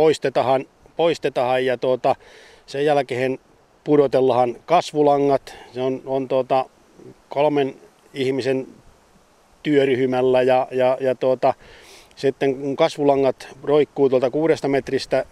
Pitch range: 130-145 Hz